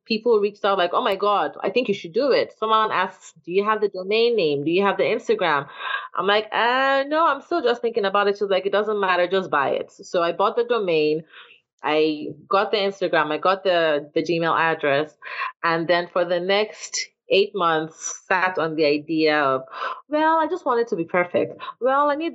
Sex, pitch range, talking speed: female, 165-225 Hz, 220 wpm